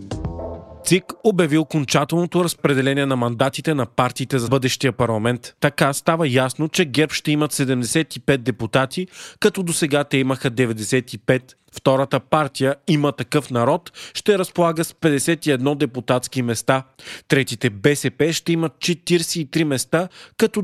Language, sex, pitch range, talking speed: Bulgarian, male, 130-165 Hz, 125 wpm